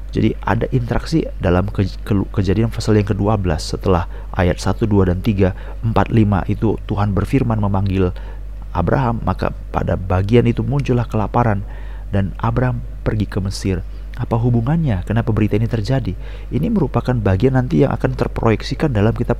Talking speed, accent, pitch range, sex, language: 150 wpm, native, 95-120 Hz, male, Indonesian